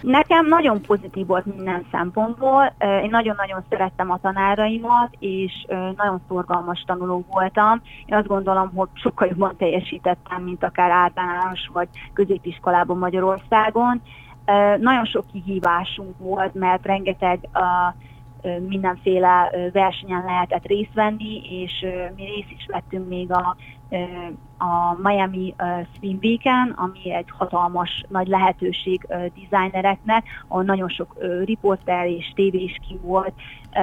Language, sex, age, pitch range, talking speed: Hungarian, female, 30-49, 180-200 Hz, 115 wpm